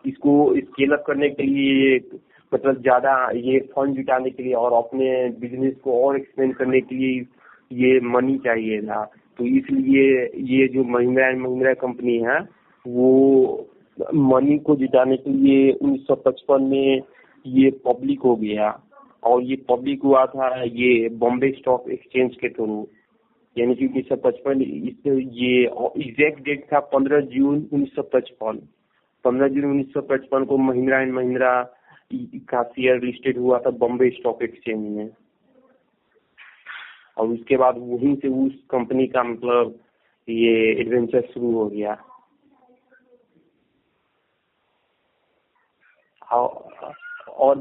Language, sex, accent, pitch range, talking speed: Hindi, male, native, 125-140 Hz, 120 wpm